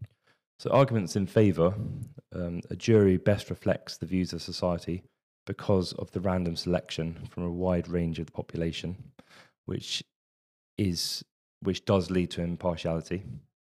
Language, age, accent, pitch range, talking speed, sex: English, 20-39, British, 90-105 Hz, 140 wpm, male